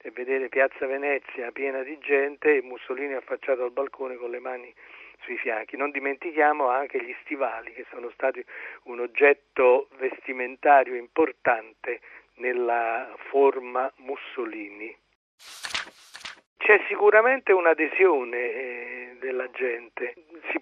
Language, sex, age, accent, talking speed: Italian, male, 50-69, native, 115 wpm